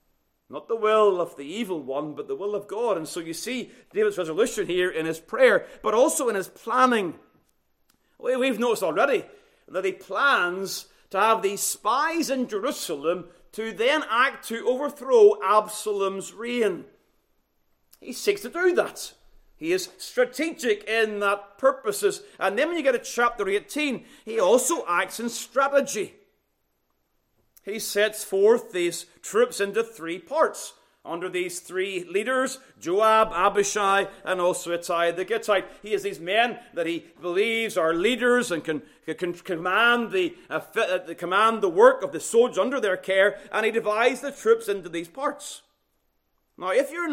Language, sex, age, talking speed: English, male, 40-59, 160 wpm